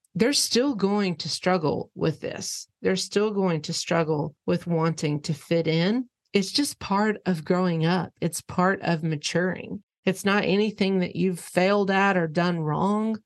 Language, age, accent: English, 40-59, American